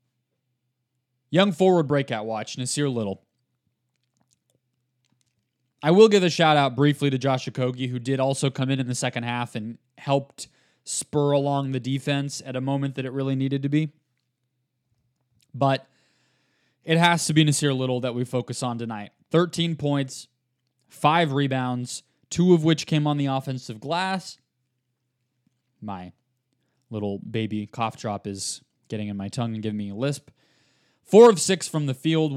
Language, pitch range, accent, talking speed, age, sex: English, 125-145 Hz, American, 155 wpm, 20-39, male